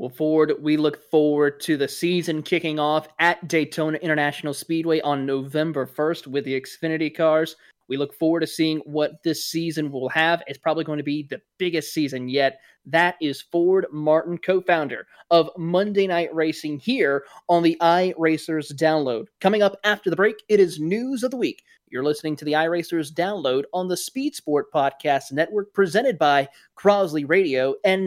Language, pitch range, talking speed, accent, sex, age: English, 140-170 Hz, 175 wpm, American, male, 20-39